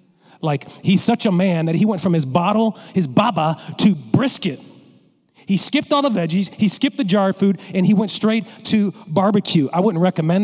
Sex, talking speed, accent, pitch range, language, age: male, 200 wpm, American, 155-195 Hz, English, 40-59